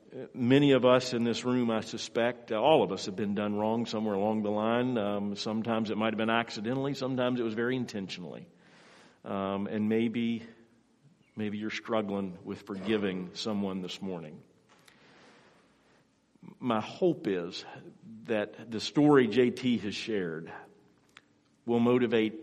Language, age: English, 50-69